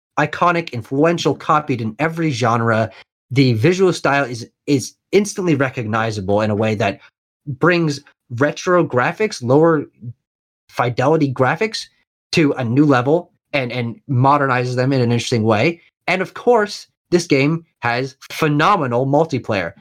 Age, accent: 30-49, American